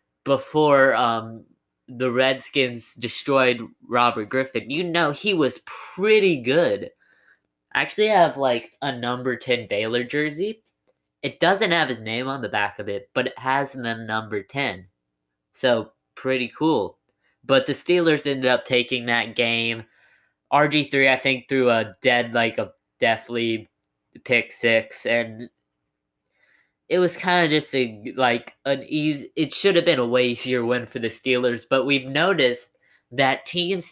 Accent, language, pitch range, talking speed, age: American, English, 115-140 Hz, 150 wpm, 20-39